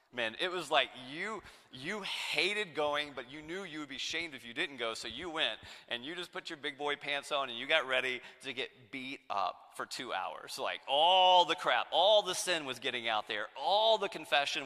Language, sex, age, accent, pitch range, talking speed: English, male, 30-49, American, 105-160 Hz, 230 wpm